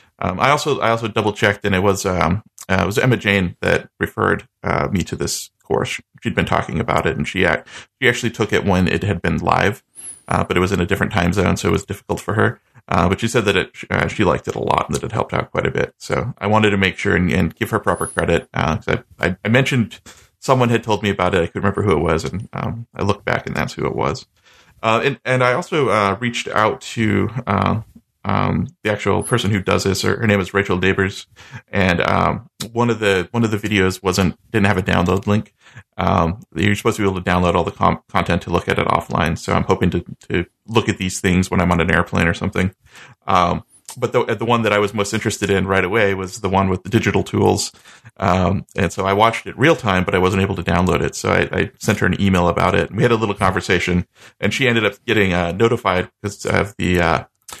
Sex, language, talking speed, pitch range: male, English, 255 wpm, 90-110 Hz